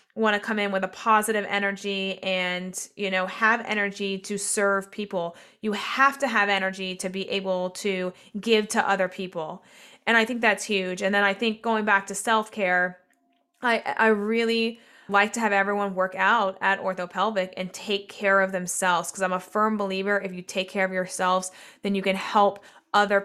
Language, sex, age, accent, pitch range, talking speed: English, female, 20-39, American, 185-210 Hz, 195 wpm